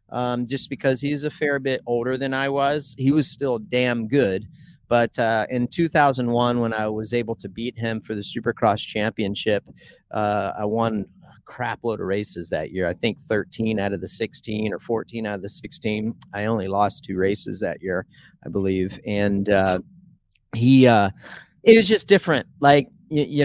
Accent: American